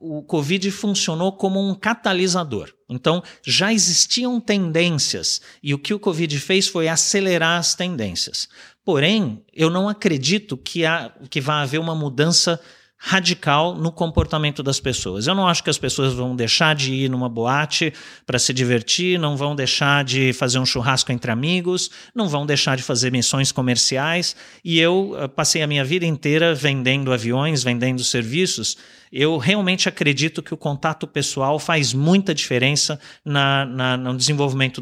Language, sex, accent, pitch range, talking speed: Portuguese, male, Brazilian, 130-175 Hz, 155 wpm